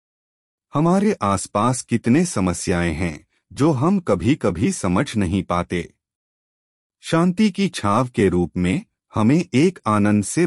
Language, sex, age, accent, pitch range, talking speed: Hindi, male, 30-49, native, 90-140 Hz, 125 wpm